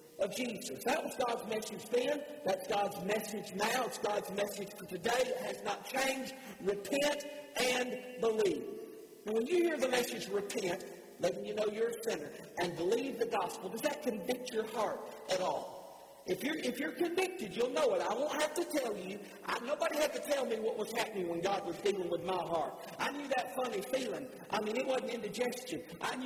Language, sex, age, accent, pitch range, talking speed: English, male, 50-69, American, 220-290 Hz, 190 wpm